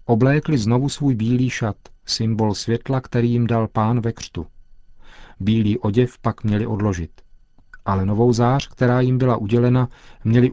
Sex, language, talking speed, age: male, Czech, 150 wpm, 40-59